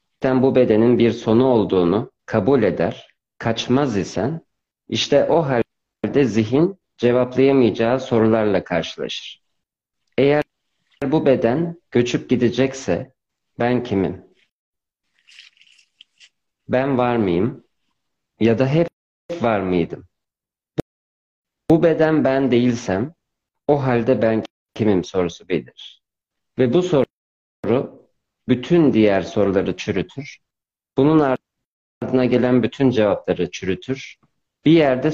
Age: 50-69